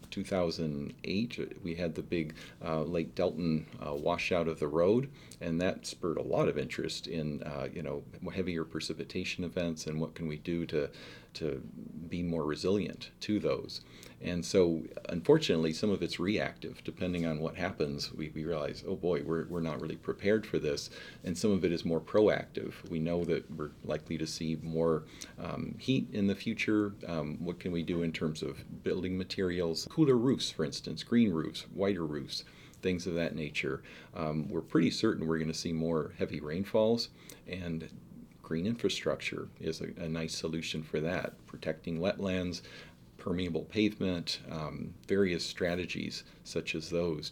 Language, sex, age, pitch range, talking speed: English, male, 40-59, 80-90 Hz, 170 wpm